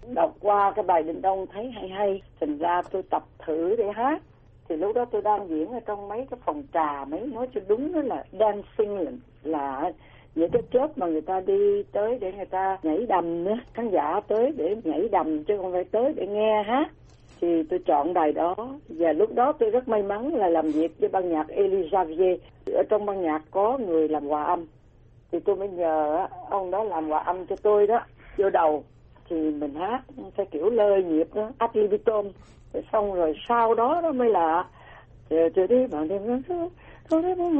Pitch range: 165-235 Hz